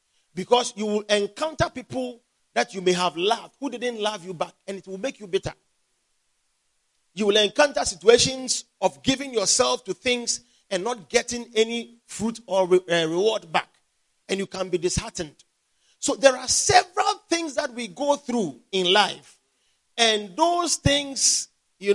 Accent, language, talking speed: Nigerian, English, 160 wpm